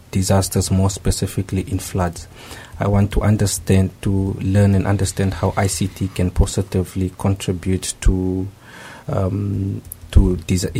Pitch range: 95-100 Hz